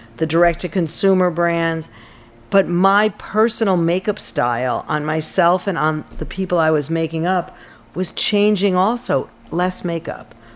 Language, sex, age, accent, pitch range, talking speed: English, female, 50-69, American, 145-180 Hz, 130 wpm